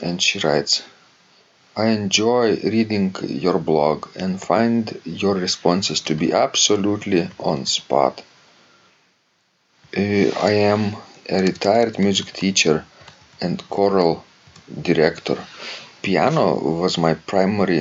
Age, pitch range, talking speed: 40-59, 80-100 Hz, 100 wpm